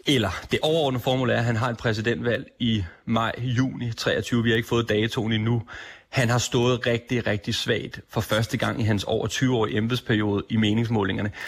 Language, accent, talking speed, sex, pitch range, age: Danish, native, 190 wpm, male, 120-145 Hz, 30-49